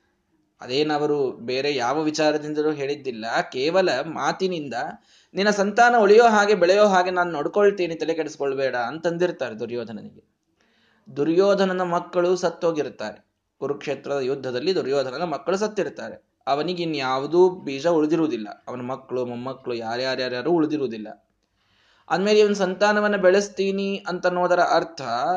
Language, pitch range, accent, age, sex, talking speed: Kannada, 150-195 Hz, native, 20-39, male, 100 wpm